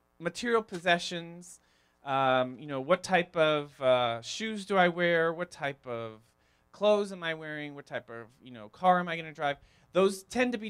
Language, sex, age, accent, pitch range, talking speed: English, male, 30-49, American, 135-180 Hz, 190 wpm